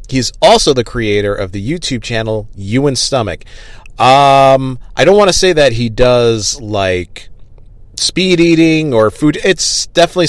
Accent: American